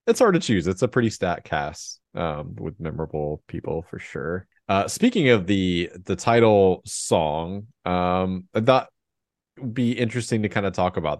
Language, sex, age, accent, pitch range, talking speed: English, male, 30-49, American, 85-100 Hz, 180 wpm